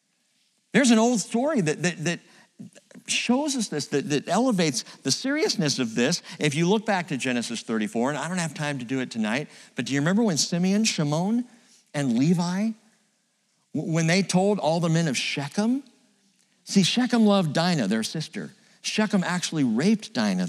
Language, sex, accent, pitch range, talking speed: English, male, American, 155-220 Hz, 175 wpm